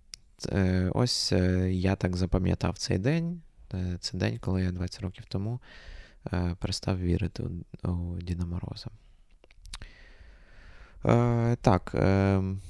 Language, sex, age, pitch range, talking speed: Ukrainian, male, 20-39, 90-110 Hz, 90 wpm